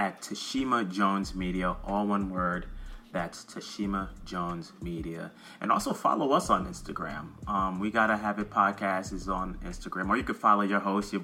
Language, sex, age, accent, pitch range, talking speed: English, male, 30-49, American, 95-110 Hz, 175 wpm